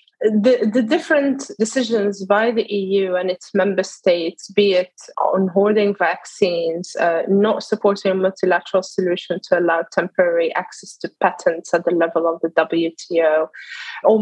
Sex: female